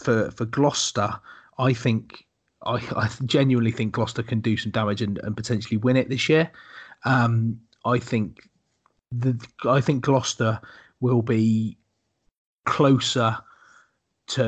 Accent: British